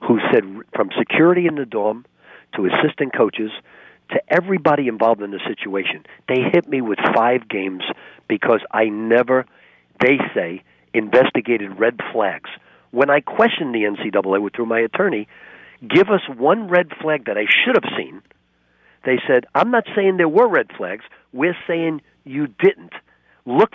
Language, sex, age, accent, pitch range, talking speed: English, male, 50-69, American, 115-170 Hz, 155 wpm